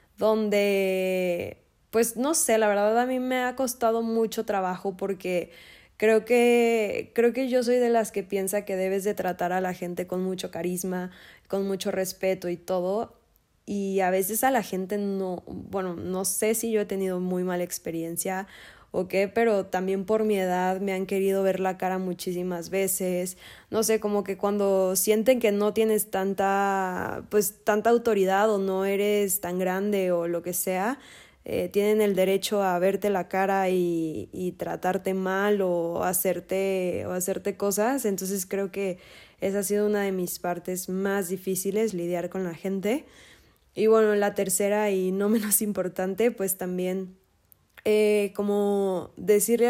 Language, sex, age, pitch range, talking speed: Spanish, female, 10-29, 185-215 Hz, 165 wpm